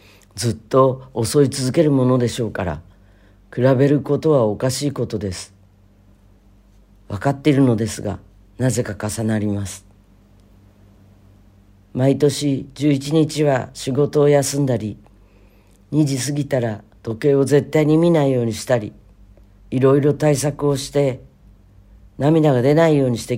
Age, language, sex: 50-69, Japanese, female